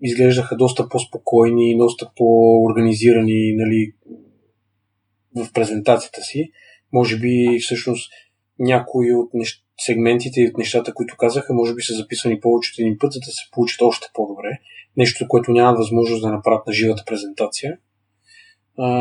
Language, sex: Bulgarian, male